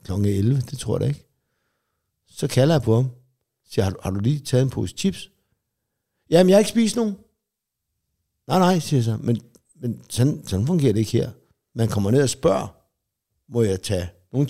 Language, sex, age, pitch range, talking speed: English, male, 60-79, 115-150 Hz, 190 wpm